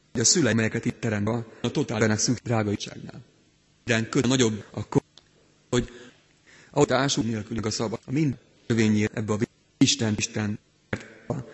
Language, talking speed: Hungarian, 140 wpm